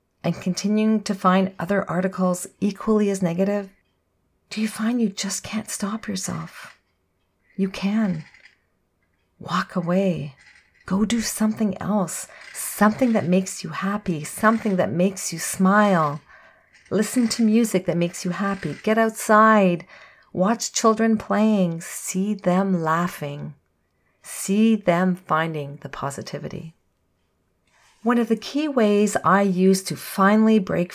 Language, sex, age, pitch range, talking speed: English, female, 40-59, 155-205 Hz, 125 wpm